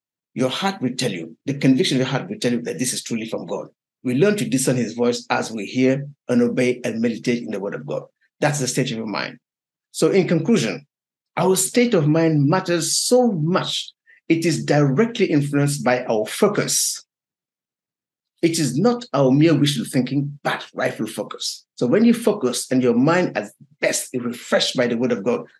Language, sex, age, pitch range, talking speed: English, male, 50-69, 125-190 Hz, 200 wpm